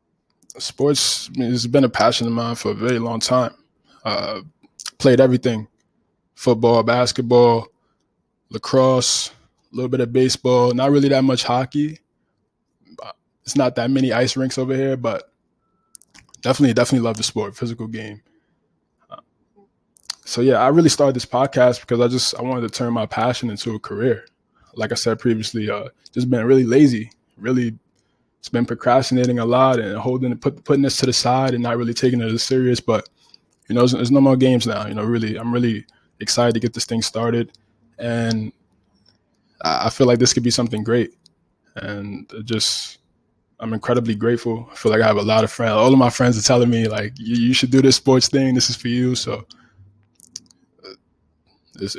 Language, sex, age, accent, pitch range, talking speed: English, male, 20-39, American, 115-130 Hz, 180 wpm